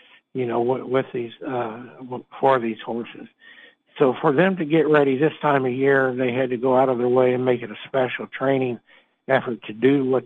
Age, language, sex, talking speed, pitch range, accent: 60-79, English, male, 210 wpm, 120-135 Hz, American